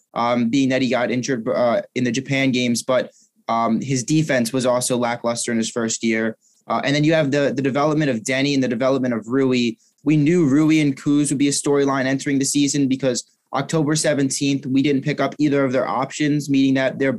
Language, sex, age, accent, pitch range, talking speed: English, male, 20-39, American, 130-150 Hz, 220 wpm